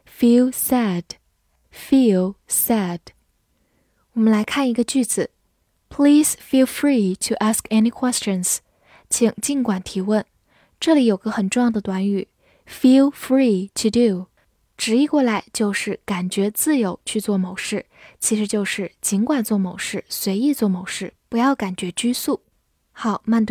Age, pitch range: 10-29, 195-255 Hz